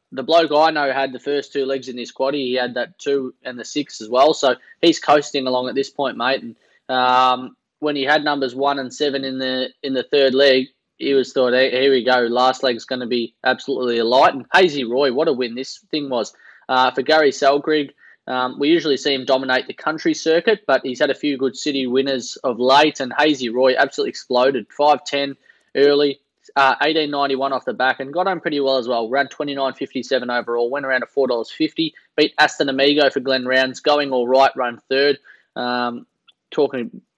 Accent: Australian